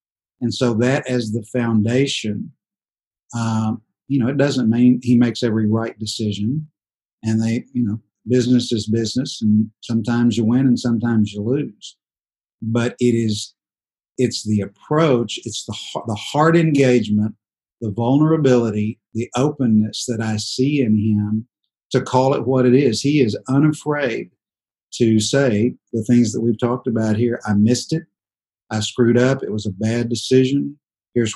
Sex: male